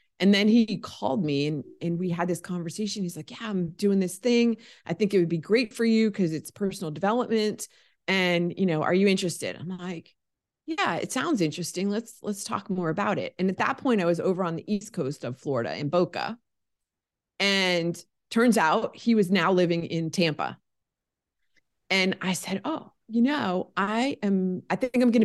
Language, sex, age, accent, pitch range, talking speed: English, female, 30-49, American, 170-220 Hz, 200 wpm